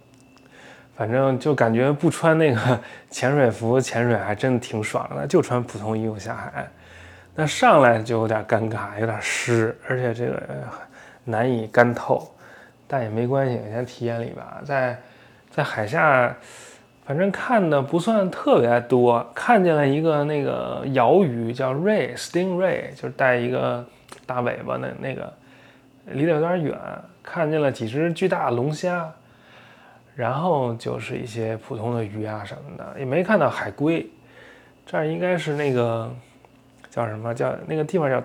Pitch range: 120-155 Hz